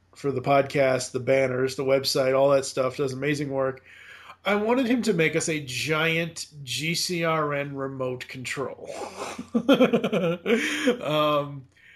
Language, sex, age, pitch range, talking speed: English, male, 30-49, 135-180 Hz, 125 wpm